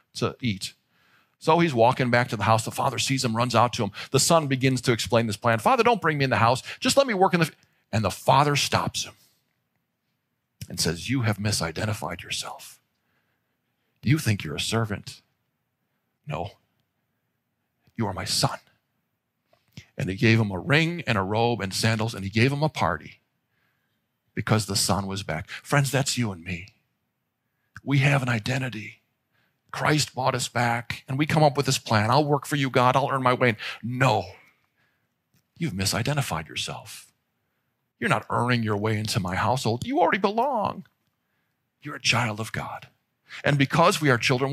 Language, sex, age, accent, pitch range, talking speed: English, male, 40-59, American, 110-140 Hz, 185 wpm